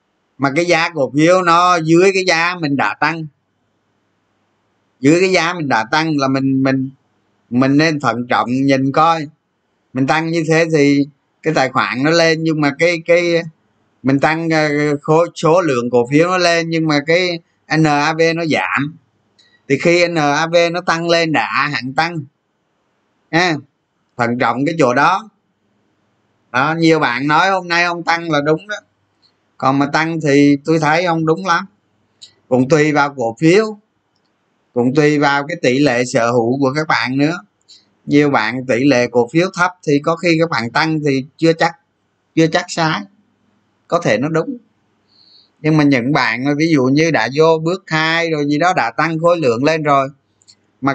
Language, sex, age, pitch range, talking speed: Vietnamese, male, 20-39, 130-165 Hz, 175 wpm